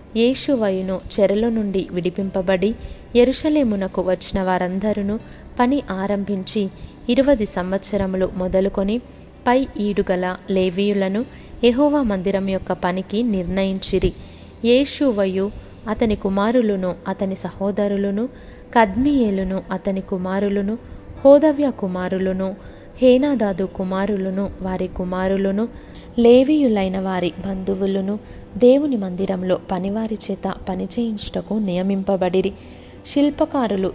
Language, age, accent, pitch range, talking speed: Telugu, 20-39, native, 190-225 Hz, 80 wpm